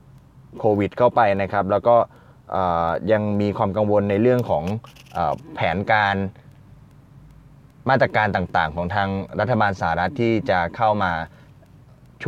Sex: male